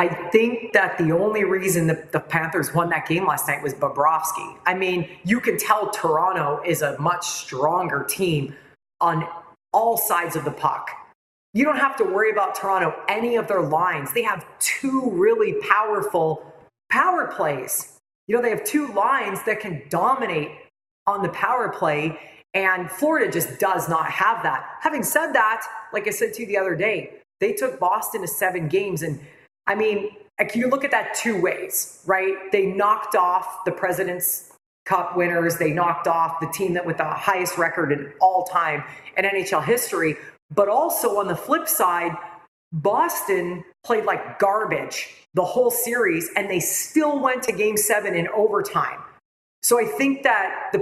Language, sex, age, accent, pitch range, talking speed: English, female, 30-49, American, 170-220 Hz, 175 wpm